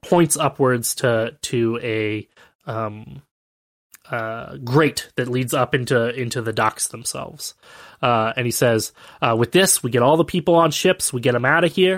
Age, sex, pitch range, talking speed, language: 20-39, male, 115-145 Hz, 180 wpm, English